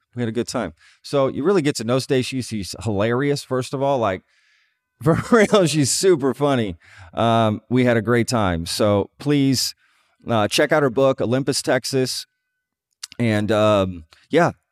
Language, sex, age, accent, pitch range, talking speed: English, male, 30-49, American, 100-125 Hz, 165 wpm